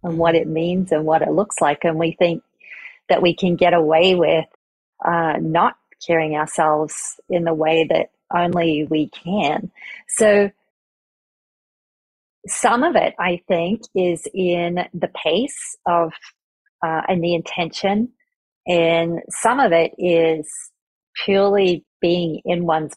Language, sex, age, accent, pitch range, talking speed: English, female, 40-59, American, 165-195 Hz, 140 wpm